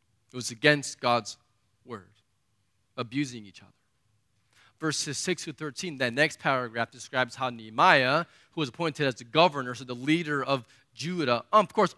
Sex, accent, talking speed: male, American, 145 wpm